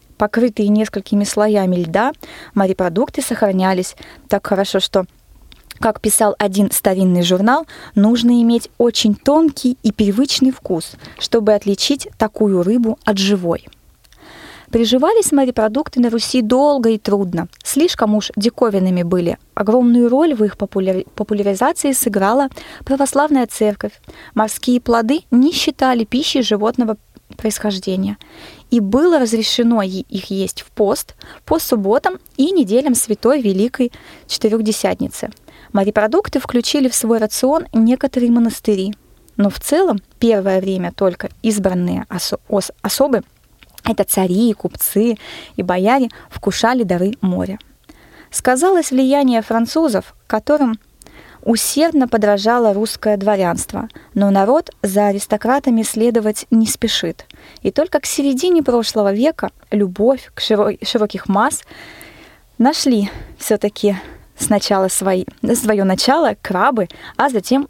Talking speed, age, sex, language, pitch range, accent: 110 wpm, 20-39, female, Russian, 205-255 Hz, native